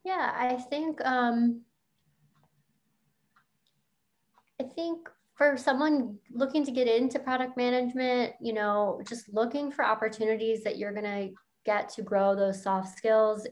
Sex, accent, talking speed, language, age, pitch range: female, American, 130 wpm, English, 20-39, 200-250 Hz